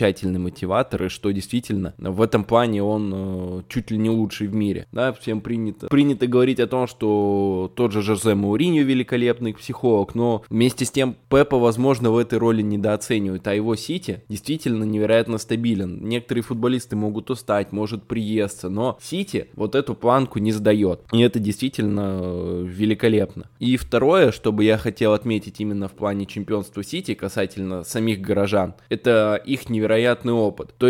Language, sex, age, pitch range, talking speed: Russian, male, 20-39, 105-125 Hz, 155 wpm